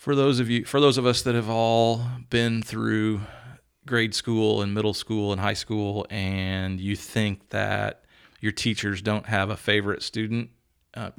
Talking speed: 175 wpm